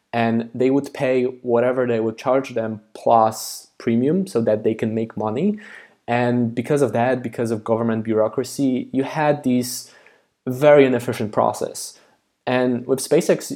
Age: 20-39